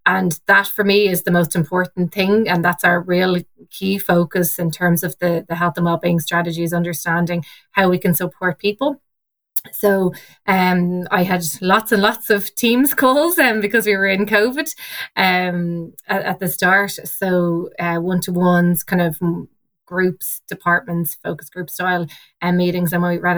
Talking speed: 180 wpm